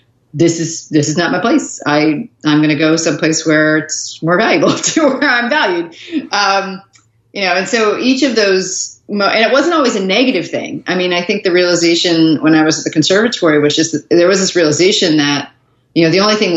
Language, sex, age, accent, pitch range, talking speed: English, female, 40-59, American, 145-195 Hz, 225 wpm